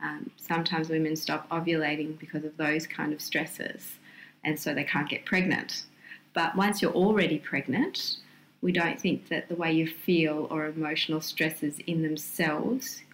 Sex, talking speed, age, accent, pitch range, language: female, 160 wpm, 30-49, Australian, 160-185 Hz, English